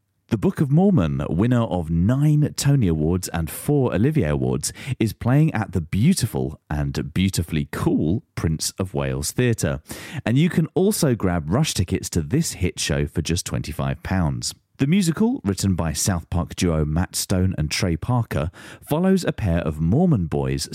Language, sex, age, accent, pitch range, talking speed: English, male, 30-49, British, 80-135 Hz, 165 wpm